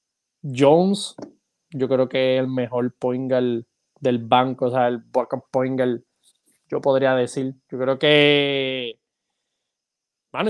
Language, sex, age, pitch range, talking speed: Spanish, male, 20-39, 135-170 Hz, 120 wpm